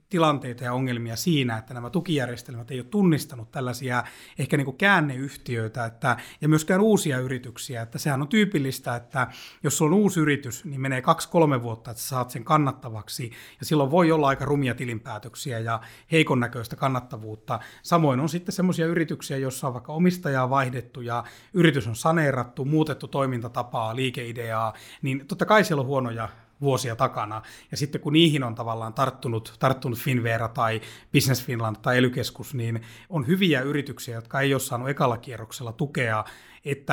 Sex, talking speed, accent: male, 155 wpm, native